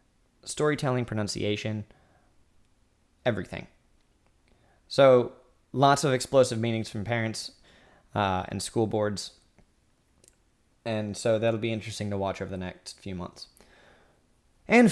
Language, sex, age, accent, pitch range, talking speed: English, male, 20-39, American, 100-130 Hz, 110 wpm